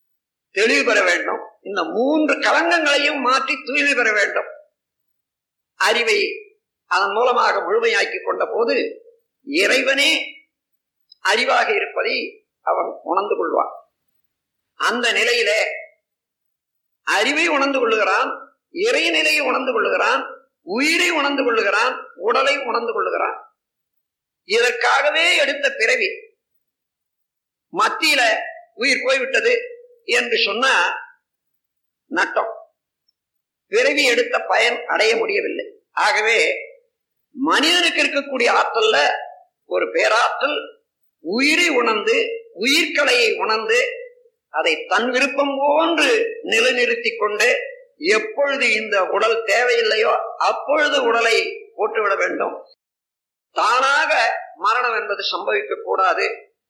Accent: native